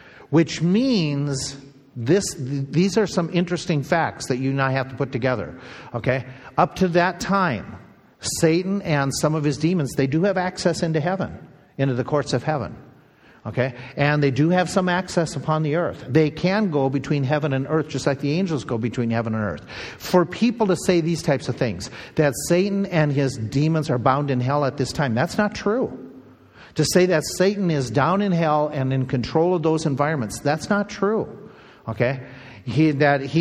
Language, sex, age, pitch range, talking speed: English, male, 50-69, 135-175 Hz, 190 wpm